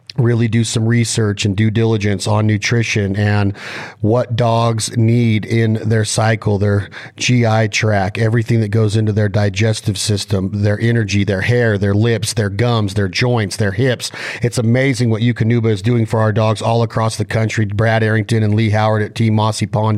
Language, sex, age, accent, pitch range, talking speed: English, male, 40-59, American, 110-120 Hz, 180 wpm